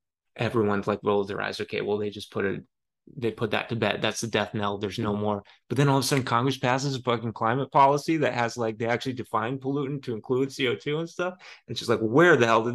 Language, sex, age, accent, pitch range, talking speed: English, male, 20-39, American, 105-125 Hz, 255 wpm